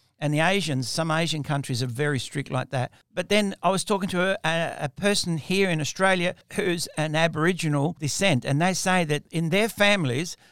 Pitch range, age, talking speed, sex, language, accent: 140-170 Hz, 60-79, 195 wpm, male, English, Australian